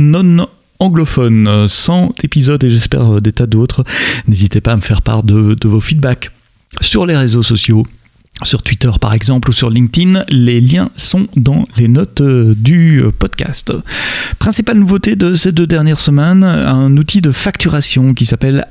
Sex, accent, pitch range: male, French, 110-140 Hz